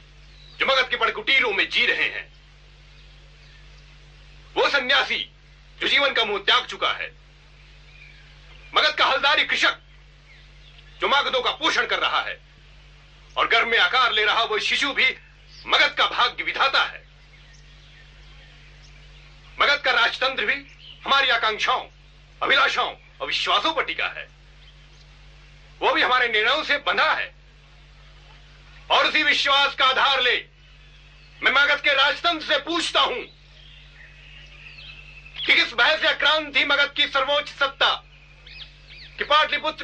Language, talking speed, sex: Hindi, 130 wpm, male